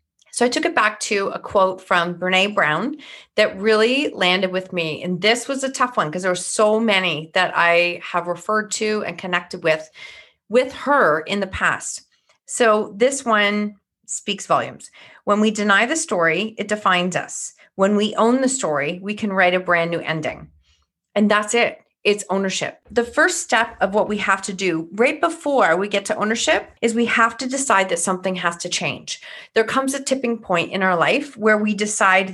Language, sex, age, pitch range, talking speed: English, female, 30-49, 185-245 Hz, 195 wpm